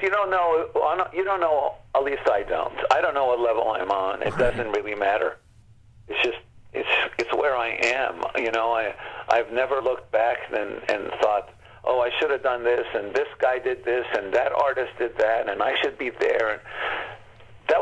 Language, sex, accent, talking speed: English, male, American, 200 wpm